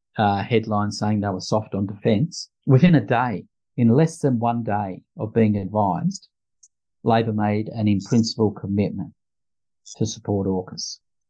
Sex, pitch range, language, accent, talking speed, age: male, 100-125 Hz, English, Australian, 150 wpm, 50-69